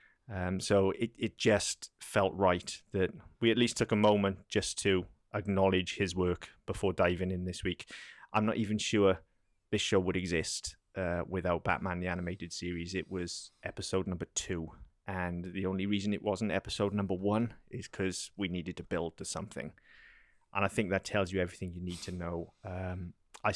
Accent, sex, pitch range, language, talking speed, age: British, male, 90-100 Hz, English, 185 wpm, 30-49